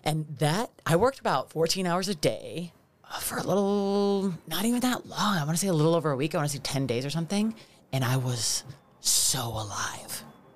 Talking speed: 215 wpm